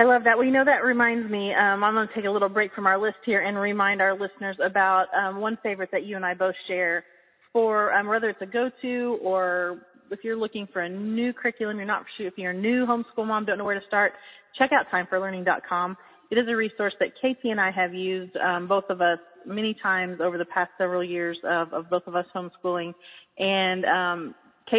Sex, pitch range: female, 185-235 Hz